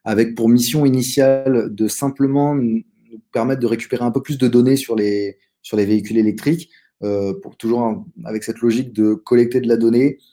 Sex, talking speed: male, 190 wpm